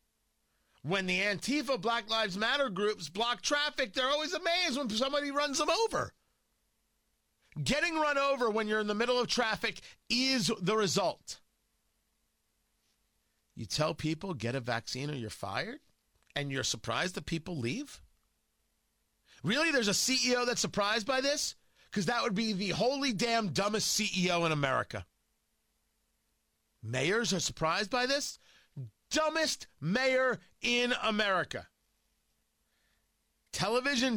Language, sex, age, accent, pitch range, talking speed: English, male, 40-59, American, 155-245 Hz, 130 wpm